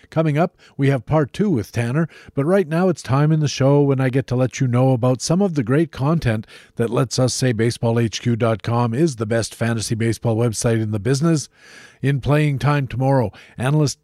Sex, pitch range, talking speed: male, 120-165 Hz, 205 wpm